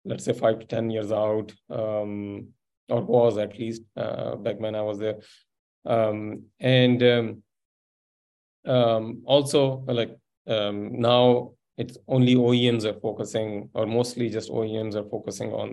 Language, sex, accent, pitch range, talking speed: English, male, Indian, 105-120 Hz, 145 wpm